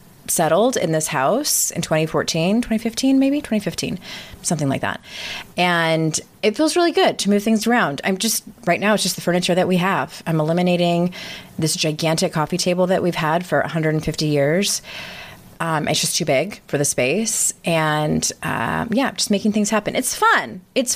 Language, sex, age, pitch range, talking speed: English, female, 30-49, 155-205 Hz, 180 wpm